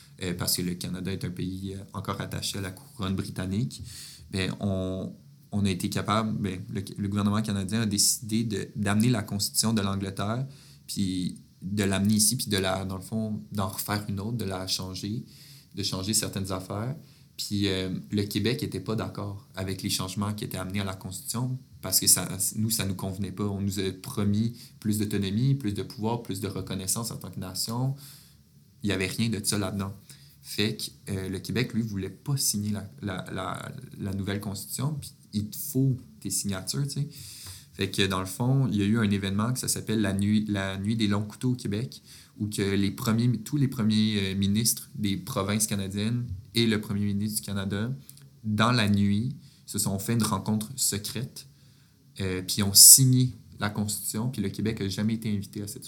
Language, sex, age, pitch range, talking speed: French, male, 20-39, 100-120 Hz, 205 wpm